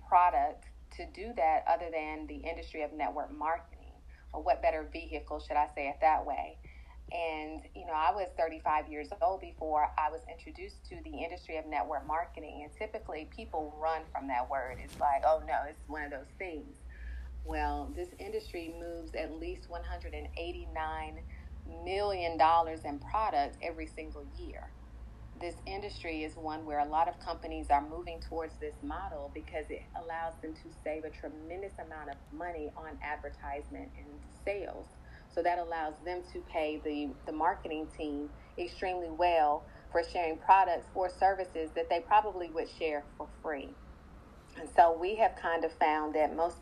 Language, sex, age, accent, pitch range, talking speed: English, female, 30-49, American, 145-175 Hz, 170 wpm